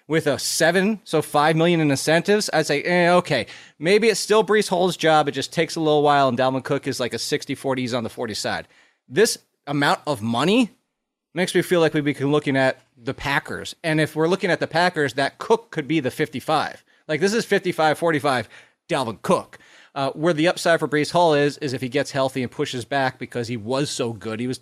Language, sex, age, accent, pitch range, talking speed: English, male, 30-49, American, 130-170 Hz, 225 wpm